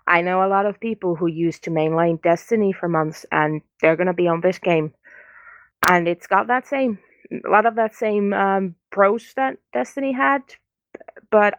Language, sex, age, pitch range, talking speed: English, female, 20-39, 180-225 Hz, 185 wpm